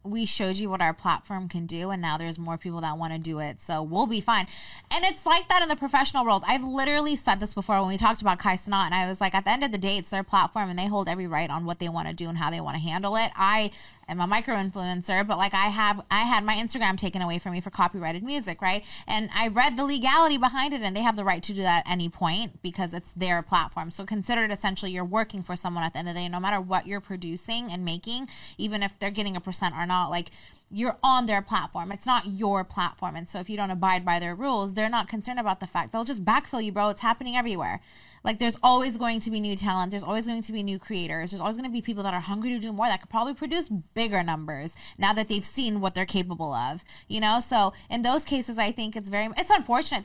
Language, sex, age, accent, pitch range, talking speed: English, female, 20-39, American, 180-230 Hz, 275 wpm